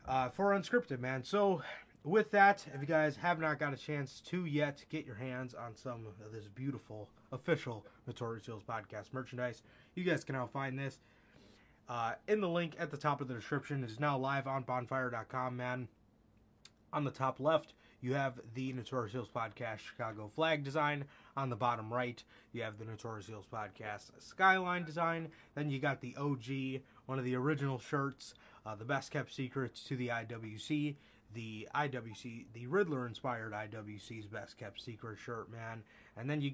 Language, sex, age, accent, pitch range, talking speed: English, male, 20-39, American, 115-145 Hz, 180 wpm